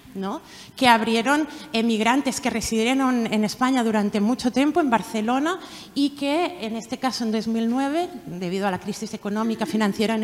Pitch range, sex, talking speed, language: 210-270 Hz, female, 150 wpm, Spanish